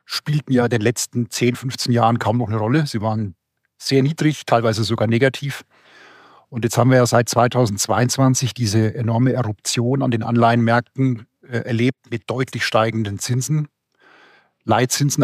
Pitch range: 115-135 Hz